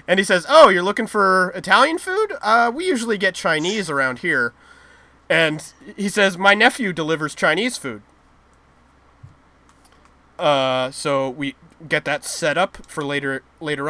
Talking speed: 145 wpm